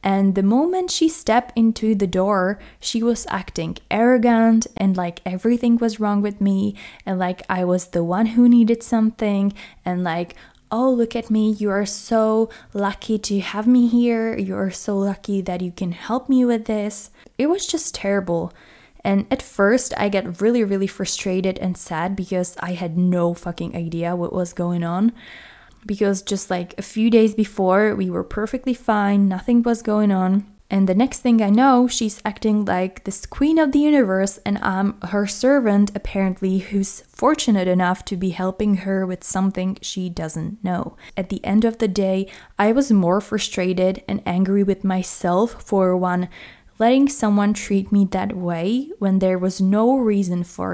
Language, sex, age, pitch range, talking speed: English, female, 20-39, 185-230 Hz, 180 wpm